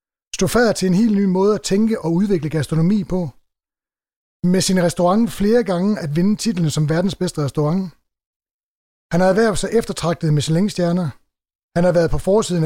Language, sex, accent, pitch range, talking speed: English, male, Danish, 165-200 Hz, 185 wpm